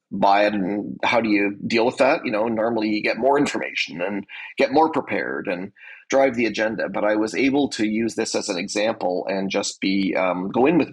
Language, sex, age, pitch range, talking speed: English, male, 40-59, 110-155 Hz, 225 wpm